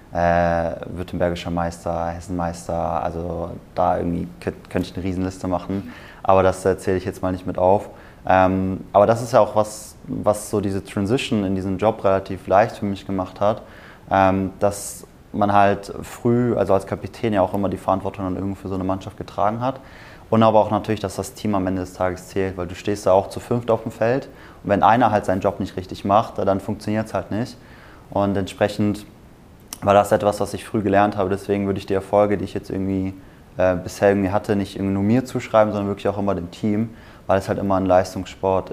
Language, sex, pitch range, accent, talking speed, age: German, male, 95-105 Hz, German, 215 wpm, 20-39